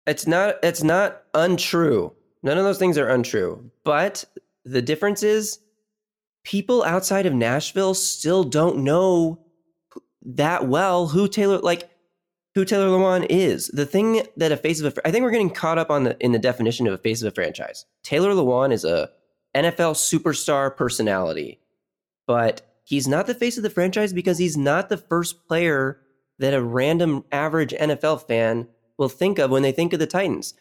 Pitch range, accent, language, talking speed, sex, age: 130-180 Hz, American, English, 180 wpm, male, 20-39